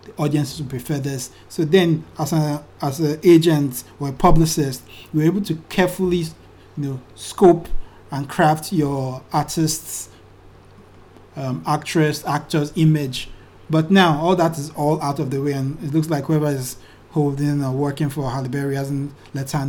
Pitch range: 135-160 Hz